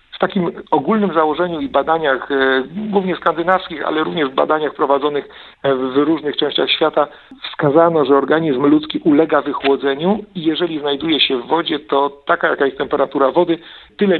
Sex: male